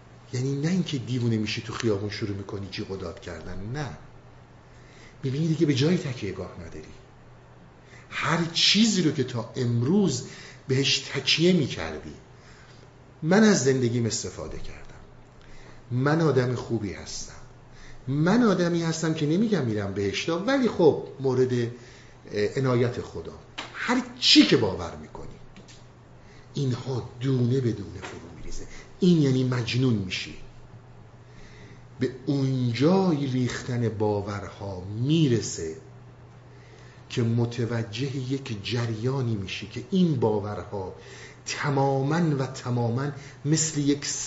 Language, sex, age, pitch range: Persian, male, 50-69, 115-150 Hz